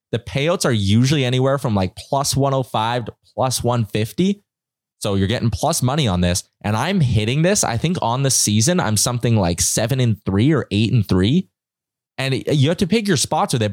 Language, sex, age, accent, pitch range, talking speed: English, male, 20-39, American, 100-135 Hz, 205 wpm